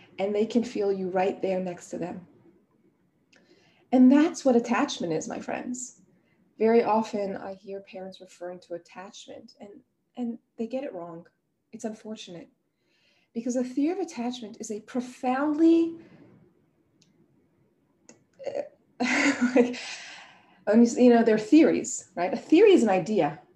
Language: English